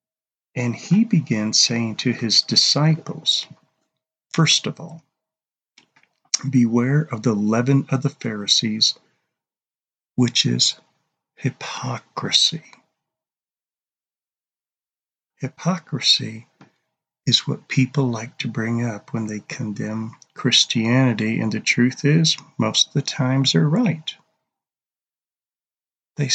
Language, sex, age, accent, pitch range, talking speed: English, male, 40-59, American, 120-155 Hz, 100 wpm